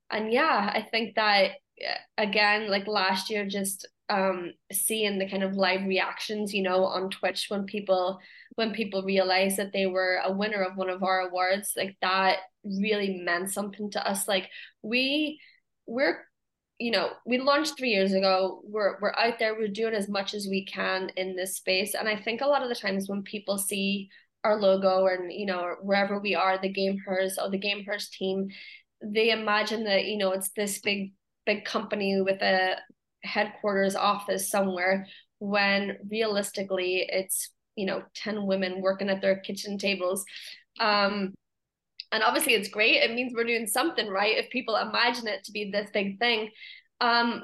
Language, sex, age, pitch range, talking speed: English, female, 20-39, 190-215 Hz, 180 wpm